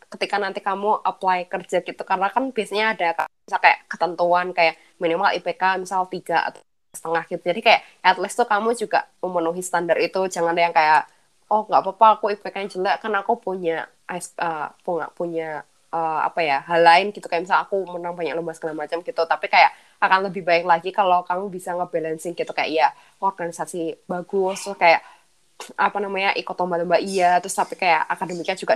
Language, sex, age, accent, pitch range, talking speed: Indonesian, female, 20-39, native, 165-195 Hz, 185 wpm